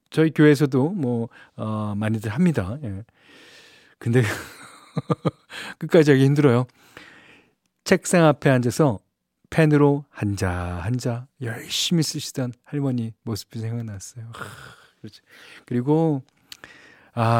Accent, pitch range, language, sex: native, 115-155 Hz, Korean, male